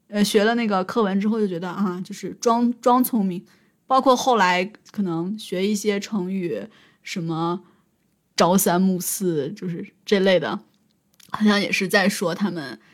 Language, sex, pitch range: Chinese, female, 190-235 Hz